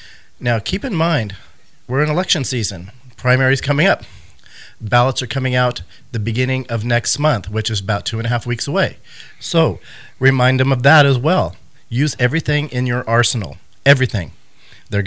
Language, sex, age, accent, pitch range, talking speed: English, male, 40-59, American, 110-135 Hz, 170 wpm